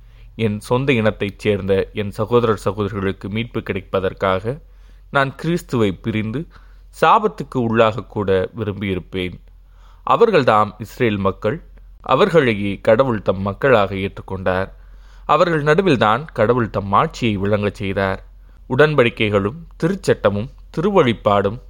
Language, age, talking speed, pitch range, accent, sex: Tamil, 20-39, 95 wpm, 100-120 Hz, native, male